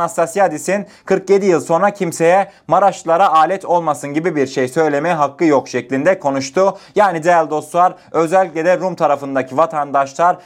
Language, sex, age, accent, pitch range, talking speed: Turkish, male, 30-49, native, 145-200 Hz, 130 wpm